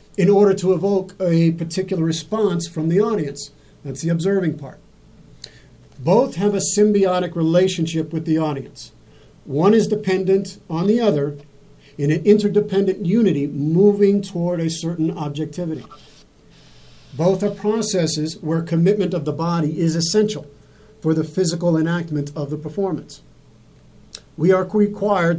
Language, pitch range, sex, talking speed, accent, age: English, 155-190 Hz, male, 135 wpm, American, 50-69